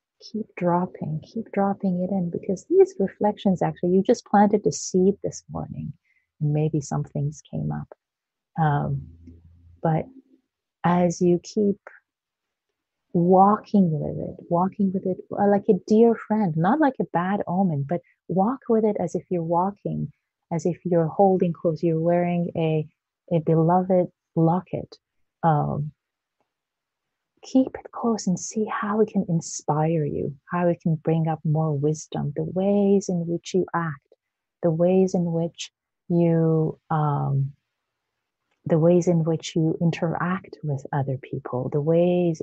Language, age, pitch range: English, 30-49, 155-190 Hz